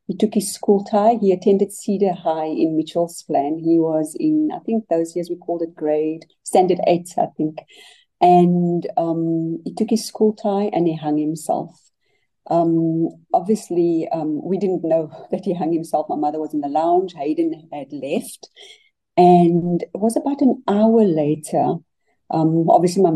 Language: English